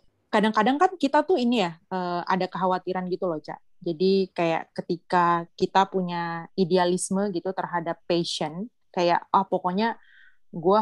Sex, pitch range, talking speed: female, 175-205 Hz, 135 wpm